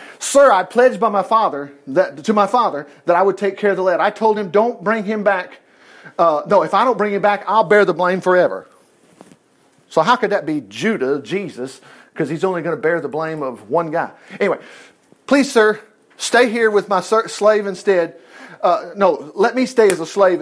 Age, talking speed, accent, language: 50-69, 215 wpm, American, English